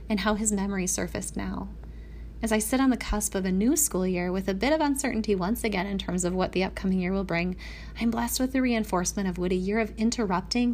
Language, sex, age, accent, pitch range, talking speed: English, female, 30-49, American, 185-230 Hz, 245 wpm